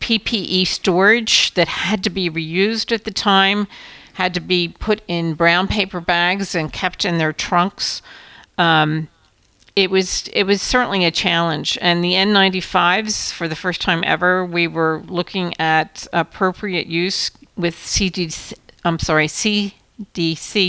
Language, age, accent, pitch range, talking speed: English, 50-69, American, 165-195 Hz, 145 wpm